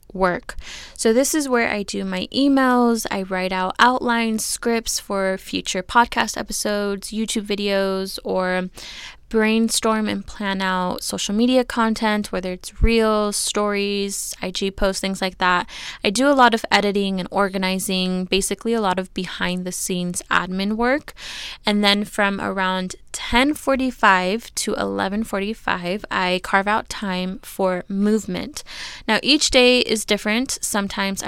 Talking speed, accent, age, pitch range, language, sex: 150 wpm, American, 10-29, 190-225 Hz, English, female